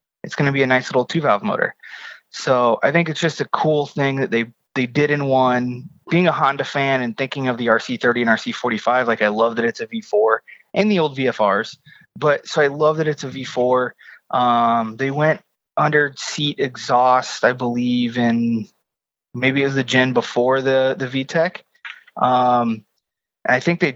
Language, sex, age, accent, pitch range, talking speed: English, male, 20-39, American, 125-155 Hz, 185 wpm